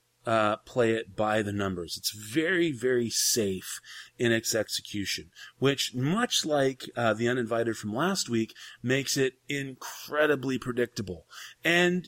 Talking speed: 135 wpm